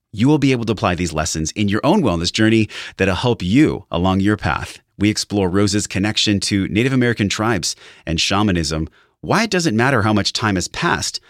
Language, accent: English, American